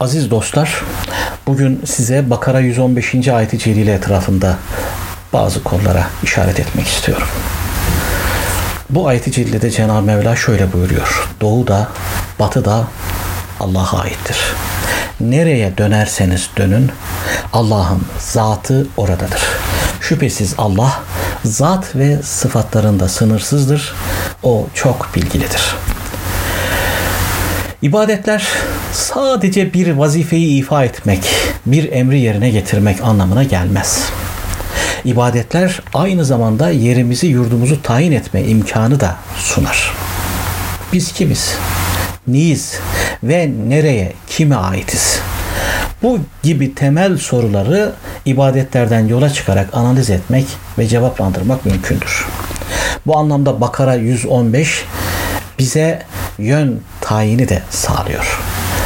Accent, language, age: native, Turkish, 60-79